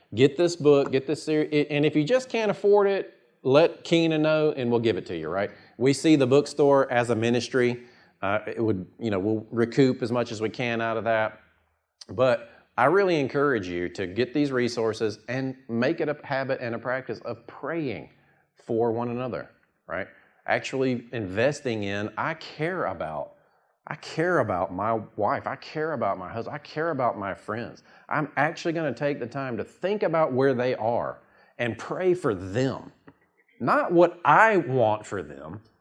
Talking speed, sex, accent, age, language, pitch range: 190 wpm, male, American, 40-59, English, 115-160 Hz